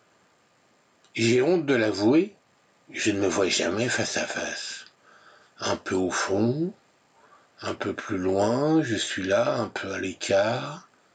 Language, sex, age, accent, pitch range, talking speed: French, male, 60-79, French, 100-135 Hz, 145 wpm